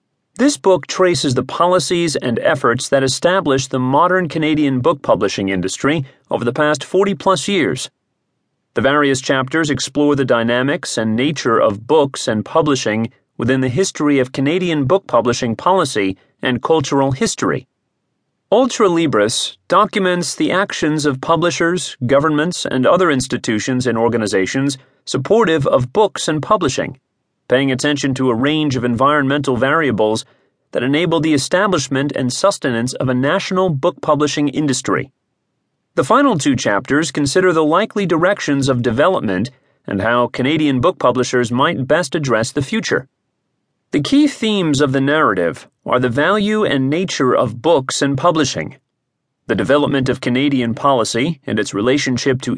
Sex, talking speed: male, 145 wpm